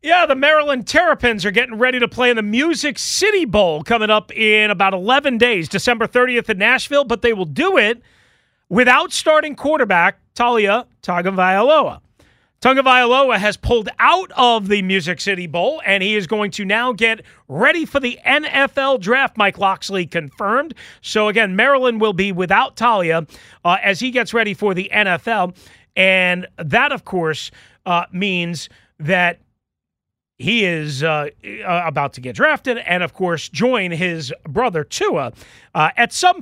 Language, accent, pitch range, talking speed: English, American, 170-240 Hz, 160 wpm